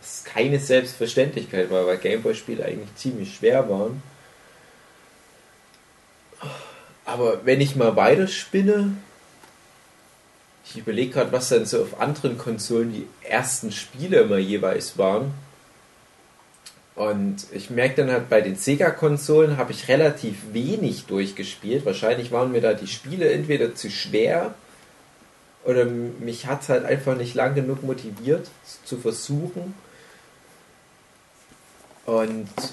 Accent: German